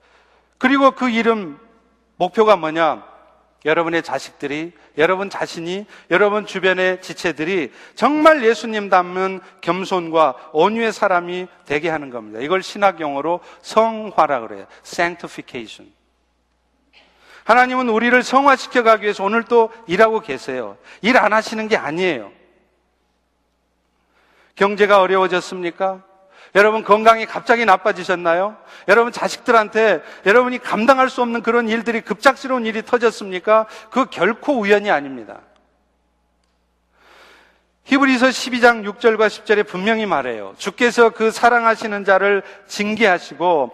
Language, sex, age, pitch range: Korean, male, 40-59, 175-230 Hz